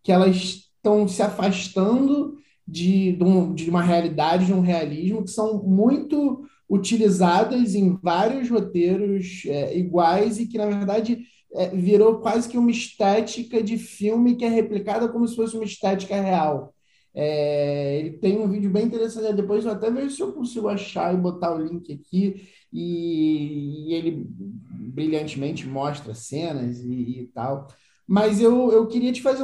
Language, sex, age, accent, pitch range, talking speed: Portuguese, male, 20-39, Brazilian, 165-215 Hz, 150 wpm